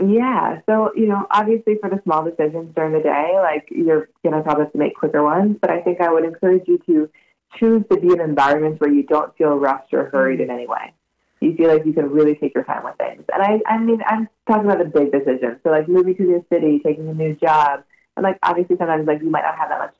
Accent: American